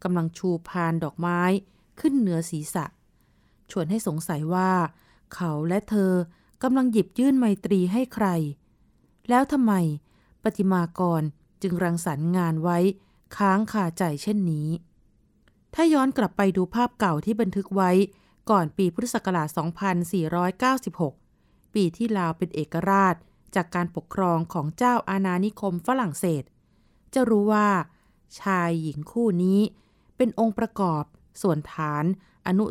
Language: Thai